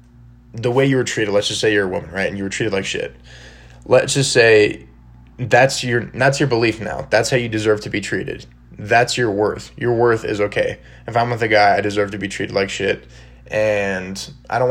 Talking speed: 230 wpm